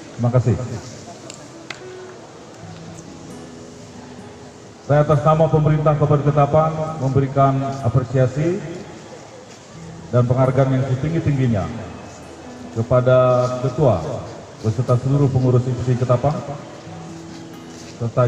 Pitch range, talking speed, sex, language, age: 120-145 Hz, 70 wpm, male, Indonesian, 40-59